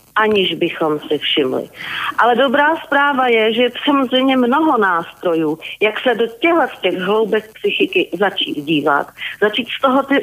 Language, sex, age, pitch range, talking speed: Slovak, female, 40-59, 200-245 Hz, 160 wpm